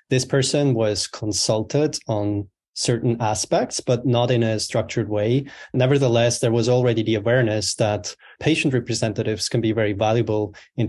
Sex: male